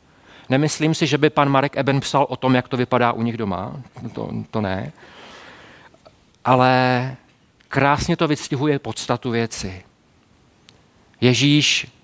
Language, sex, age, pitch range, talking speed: Czech, male, 40-59, 110-140 Hz, 130 wpm